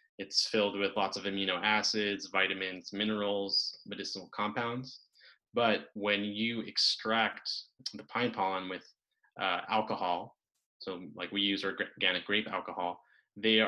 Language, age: English, 20-39